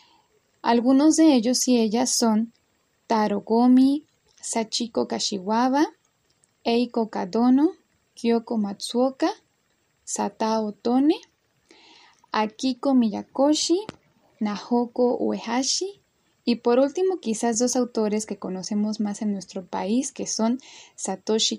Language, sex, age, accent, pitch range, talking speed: Spanish, female, 10-29, Mexican, 205-255 Hz, 95 wpm